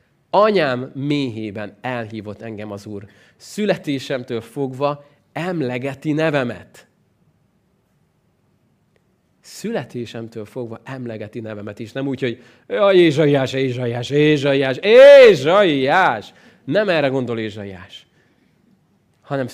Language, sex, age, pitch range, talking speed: Hungarian, male, 30-49, 115-165 Hz, 85 wpm